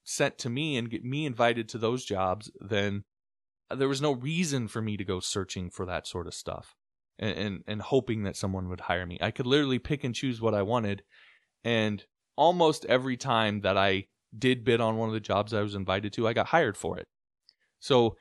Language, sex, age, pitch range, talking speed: English, male, 20-39, 105-140 Hz, 215 wpm